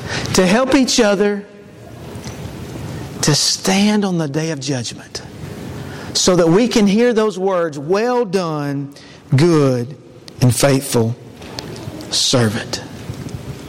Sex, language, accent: male, English, American